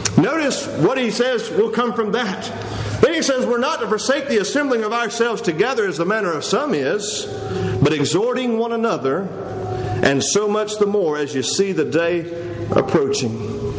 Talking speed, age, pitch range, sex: 180 wpm, 40-59, 150-235 Hz, male